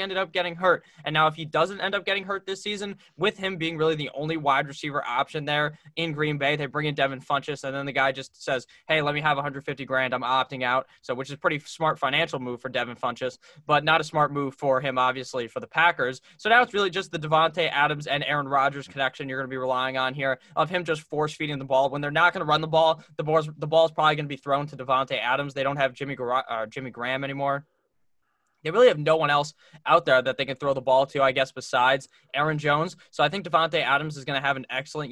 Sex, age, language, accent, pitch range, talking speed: male, 10-29, English, American, 135-155 Hz, 270 wpm